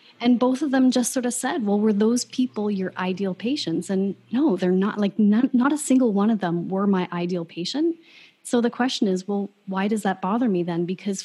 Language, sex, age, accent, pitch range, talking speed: English, female, 30-49, American, 185-245 Hz, 230 wpm